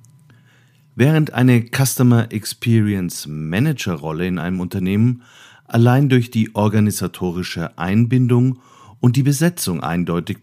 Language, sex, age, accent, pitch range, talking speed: German, male, 50-69, German, 100-130 Hz, 105 wpm